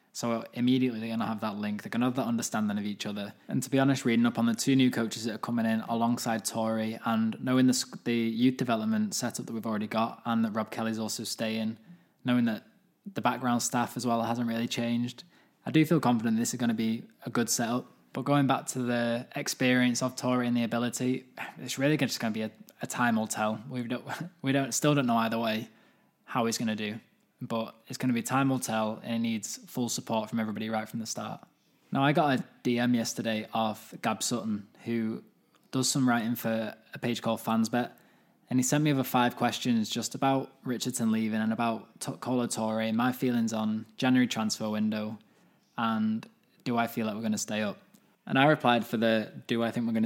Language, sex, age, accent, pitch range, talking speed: English, male, 20-39, British, 110-125 Hz, 225 wpm